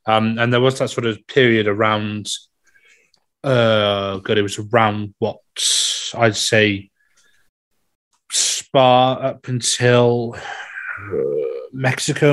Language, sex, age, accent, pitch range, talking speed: English, male, 20-39, British, 110-130 Hz, 100 wpm